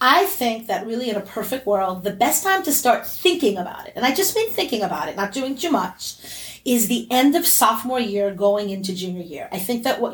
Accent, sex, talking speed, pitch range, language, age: American, female, 245 wpm, 205-270 Hz, English, 30-49